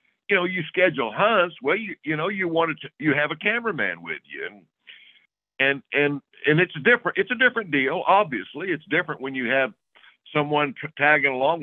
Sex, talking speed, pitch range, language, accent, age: male, 195 wpm, 145-210 Hz, English, American, 60-79